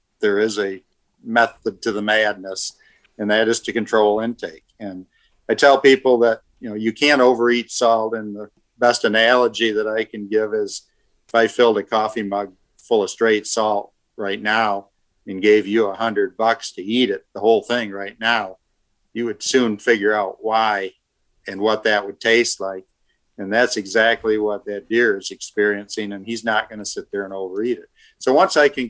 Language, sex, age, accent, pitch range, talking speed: English, male, 50-69, American, 100-115 Hz, 195 wpm